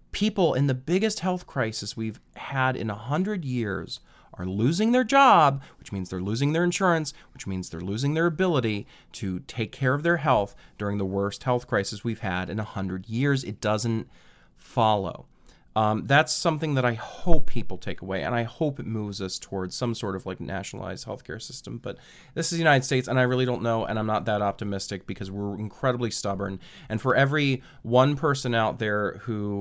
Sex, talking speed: male, 195 wpm